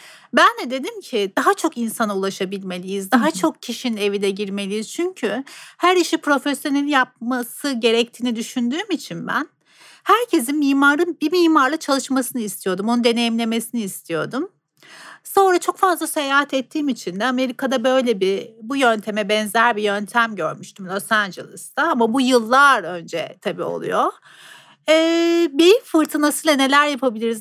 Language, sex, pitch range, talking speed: Turkish, female, 215-315 Hz, 135 wpm